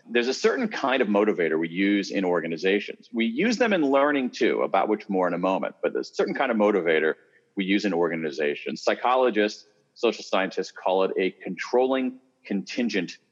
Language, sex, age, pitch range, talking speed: English, male, 40-59, 100-140 Hz, 185 wpm